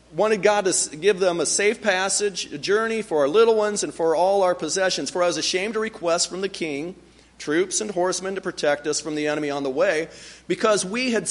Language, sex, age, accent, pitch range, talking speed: English, male, 40-59, American, 145-205 Hz, 230 wpm